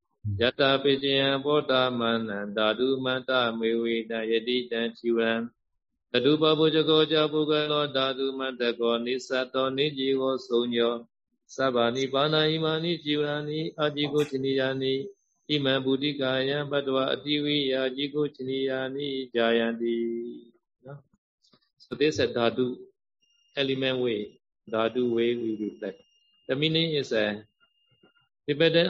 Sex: male